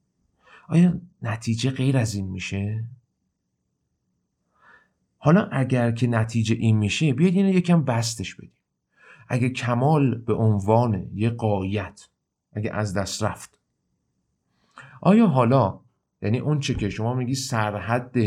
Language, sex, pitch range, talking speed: Persian, male, 100-130 Hz, 115 wpm